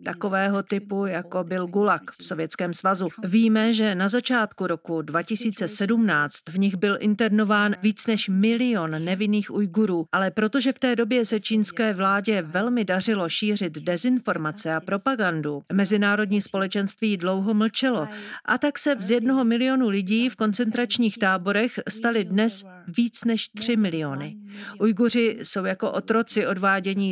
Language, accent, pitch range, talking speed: Czech, native, 190-225 Hz, 135 wpm